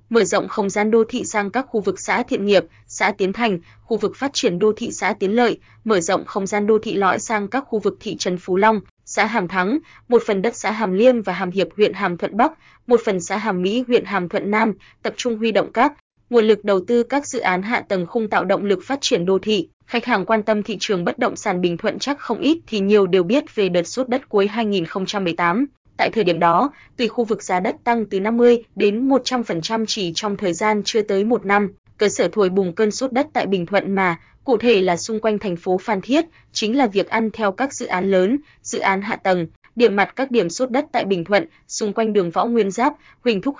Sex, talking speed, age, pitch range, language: female, 250 wpm, 20-39, 190-235 Hz, Vietnamese